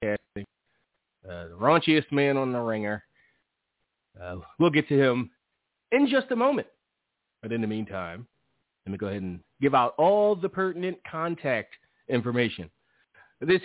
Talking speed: 145 wpm